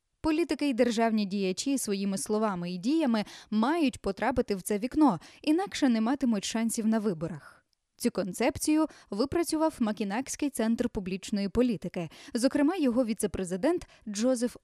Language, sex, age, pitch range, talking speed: Ukrainian, female, 20-39, 205-275 Hz, 125 wpm